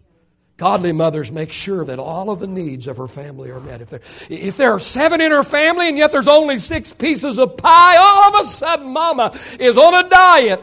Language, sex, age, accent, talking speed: English, male, 60-79, American, 220 wpm